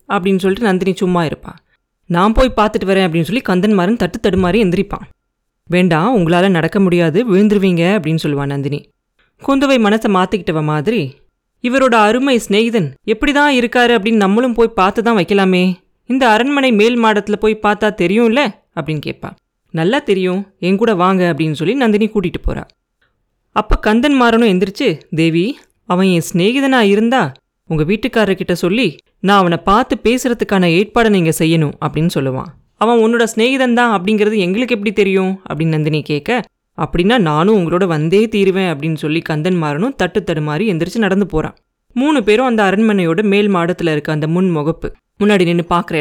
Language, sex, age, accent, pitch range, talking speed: Tamil, female, 20-39, native, 175-225 Hz, 115 wpm